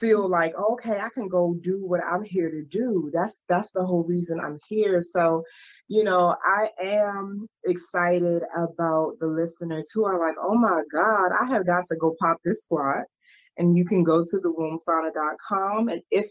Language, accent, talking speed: English, American, 185 wpm